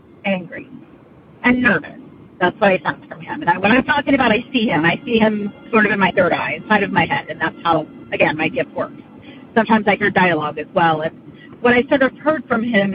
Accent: American